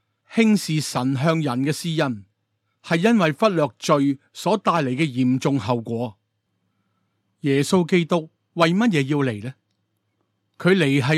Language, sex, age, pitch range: Chinese, male, 30-49, 115-165 Hz